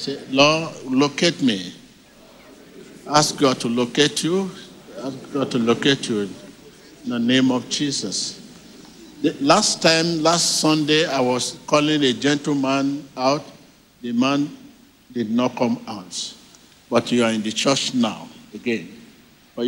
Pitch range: 120-150 Hz